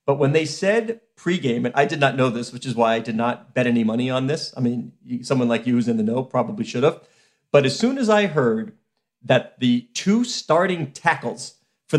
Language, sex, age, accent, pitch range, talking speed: English, male, 40-59, American, 125-185 Hz, 230 wpm